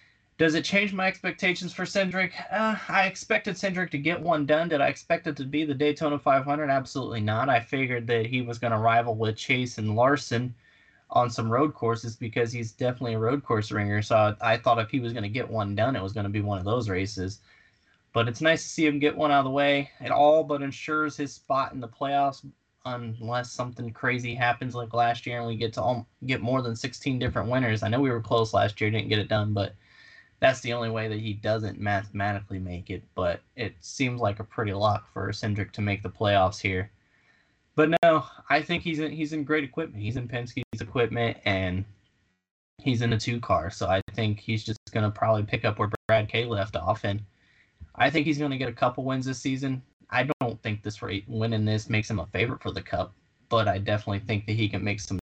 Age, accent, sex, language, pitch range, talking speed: 20-39, American, male, English, 105-140 Hz, 230 wpm